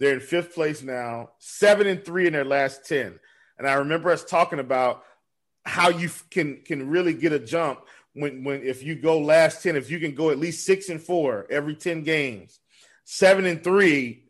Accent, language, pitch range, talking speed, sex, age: American, English, 140-175 Hz, 200 wpm, male, 40-59